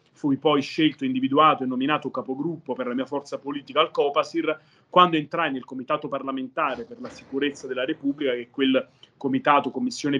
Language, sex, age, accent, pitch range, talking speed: Italian, male, 30-49, native, 130-155 Hz, 170 wpm